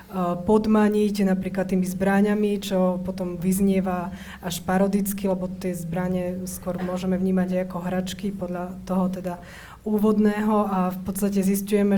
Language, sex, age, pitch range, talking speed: Slovak, female, 20-39, 180-200 Hz, 125 wpm